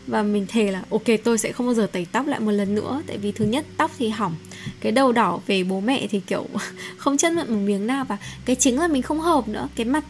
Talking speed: 280 wpm